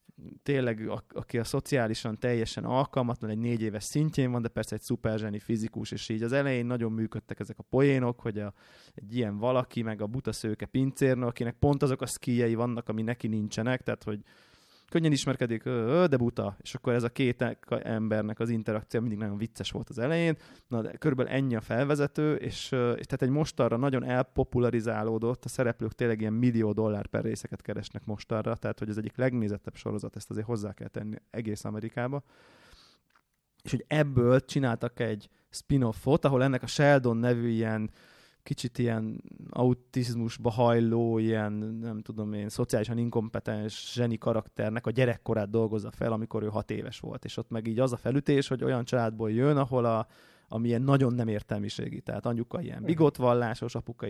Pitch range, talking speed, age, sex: 110-130 Hz, 175 wpm, 20-39, male